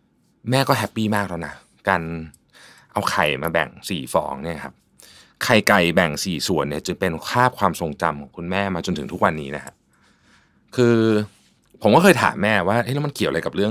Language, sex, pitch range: Thai, male, 90-120 Hz